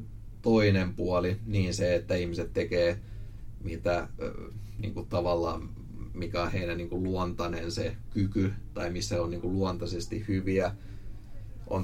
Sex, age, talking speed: male, 30-49, 110 wpm